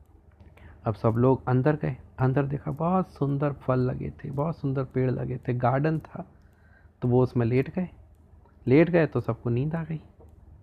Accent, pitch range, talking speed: native, 85-135 Hz, 175 wpm